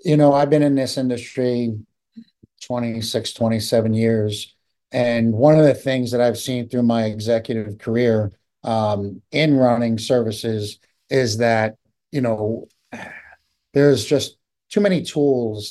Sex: male